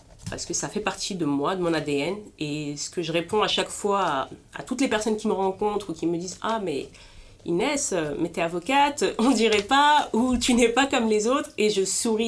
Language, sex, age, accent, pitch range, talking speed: French, female, 30-49, French, 160-215 Hz, 260 wpm